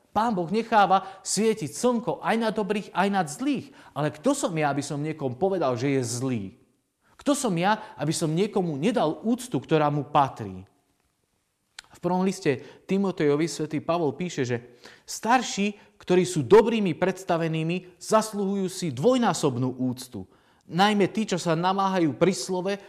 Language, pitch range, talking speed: Slovak, 130-185 Hz, 150 wpm